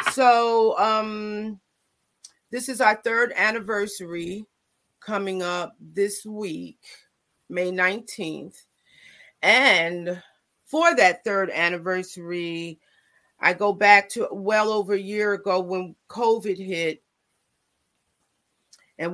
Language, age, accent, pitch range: English, 40-59, American, 175-220 Hz